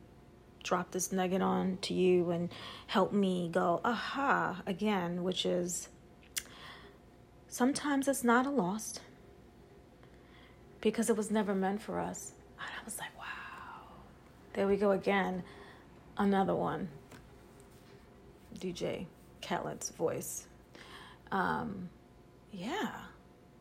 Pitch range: 195-265 Hz